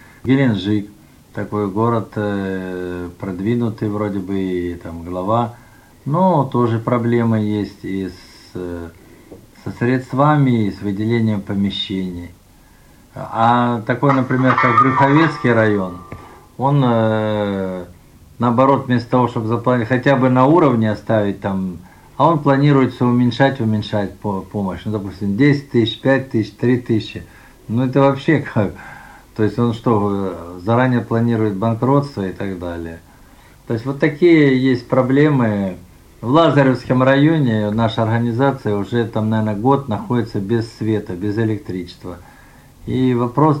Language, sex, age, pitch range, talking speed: Russian, male, 50-69, 100-130 Hz, 120 wpm